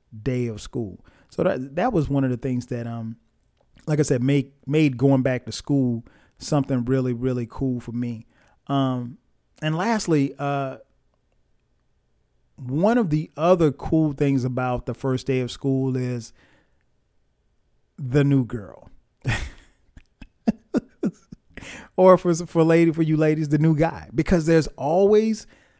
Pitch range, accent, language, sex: 125-155 Hz, American, English, male